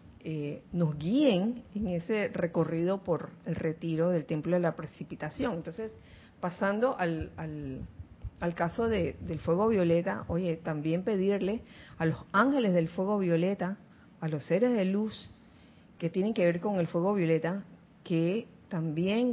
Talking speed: 150 wpm